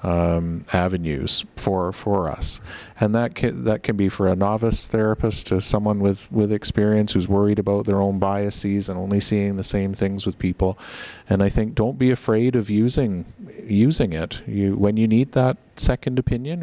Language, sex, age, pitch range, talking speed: English, male, 40-59, 95-120 Hz, 185 wpm